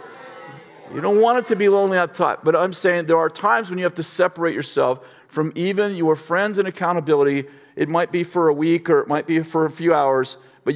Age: 50-69